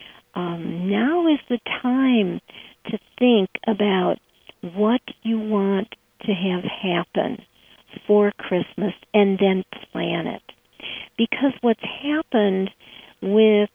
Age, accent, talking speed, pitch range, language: 50-69, American, 105 wpm, 200-240 Hz, English